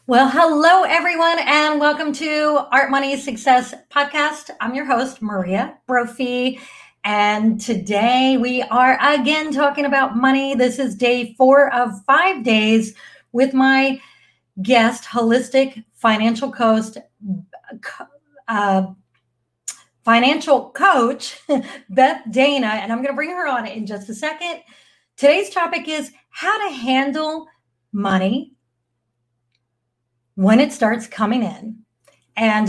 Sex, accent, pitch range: female, American, 215-275 Hz